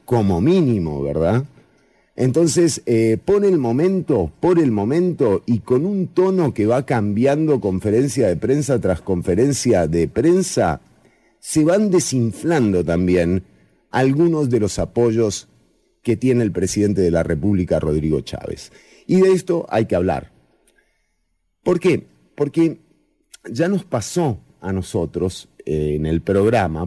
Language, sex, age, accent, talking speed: English, male, 40-59, Argentinian, 135 wpm